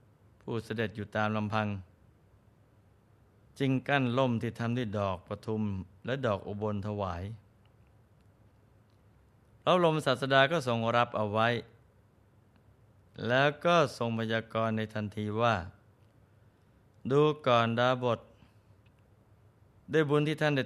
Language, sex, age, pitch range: Thai, male, 20-39, 105-125 Hz